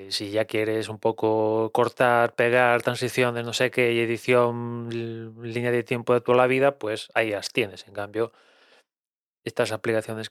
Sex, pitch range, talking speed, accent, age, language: male, 110-125 Hz, 155 wpm, Spanish, 20-39, Spanish